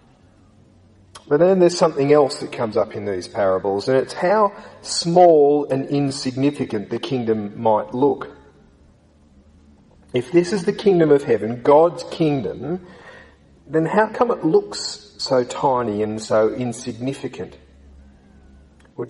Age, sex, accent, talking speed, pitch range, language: 40-59, male, Australian, 130 wpm, 115-165 Hz, English